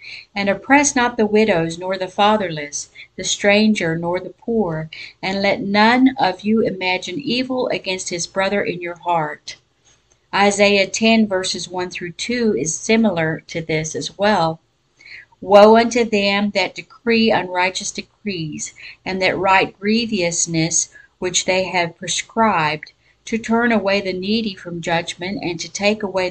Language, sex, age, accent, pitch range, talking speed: English, female, 50-69, American, 165-215 Hz, 145 wpm